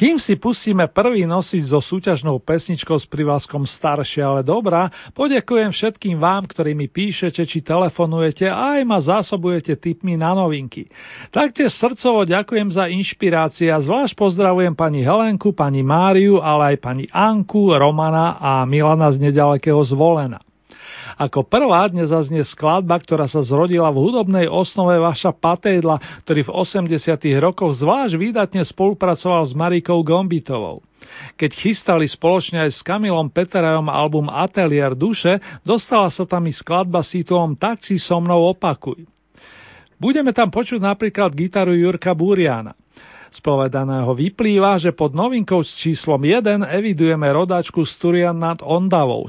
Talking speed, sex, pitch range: 140 wpm, male, 155-190 Hz